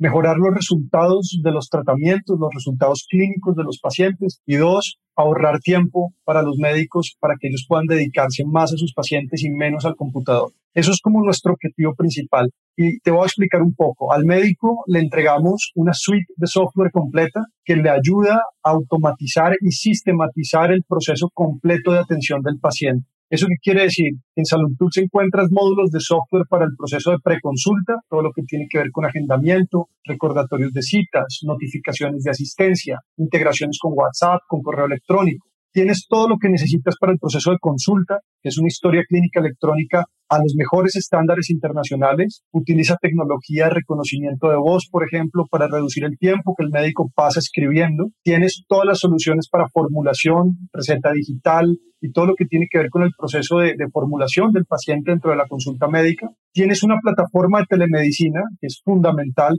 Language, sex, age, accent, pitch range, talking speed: Spanish, male, 30-49, Colombian, 150-180 Hz, 180 wpm